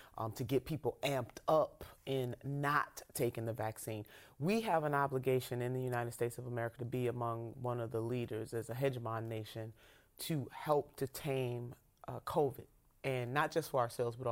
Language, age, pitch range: English, 30-49, 115-135 Hz